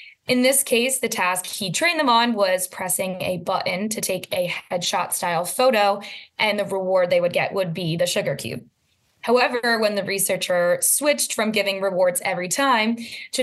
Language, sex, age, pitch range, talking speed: English, female, 20-39, 190-240 Hz, 185 wpm